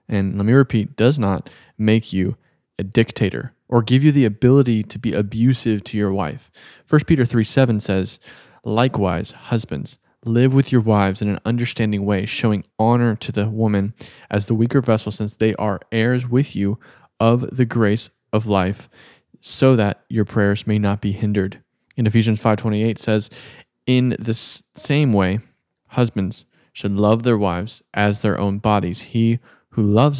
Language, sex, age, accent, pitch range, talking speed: English, male, 20-39, American, 105-120 Hz, 165 wpm